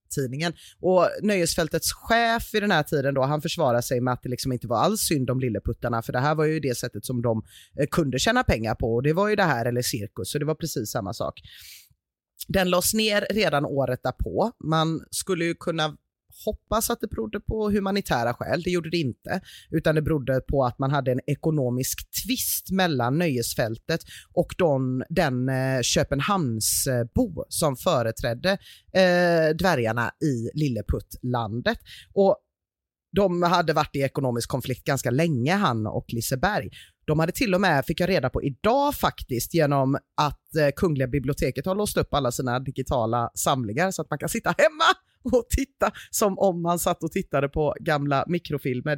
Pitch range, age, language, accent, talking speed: 130-180 Hz, 30-49, Swedish, native, 175 wpm